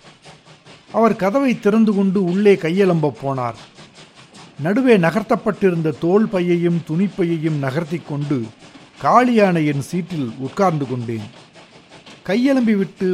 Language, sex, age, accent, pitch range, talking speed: Tamil, male, 50-69, native, 145-195 Hz, 80 wpm